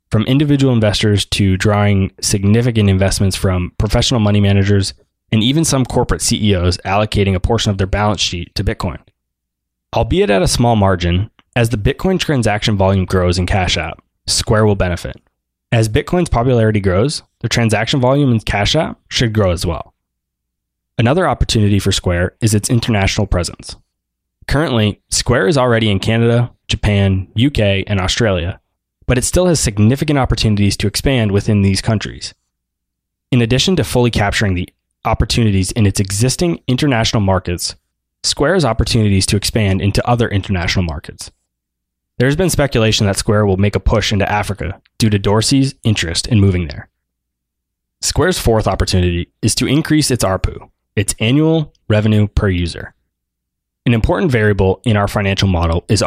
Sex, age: male, 20-39